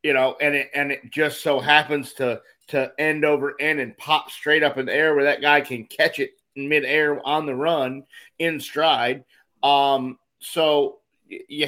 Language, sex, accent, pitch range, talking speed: English, male, American, 120-145 Hz, 185 wpm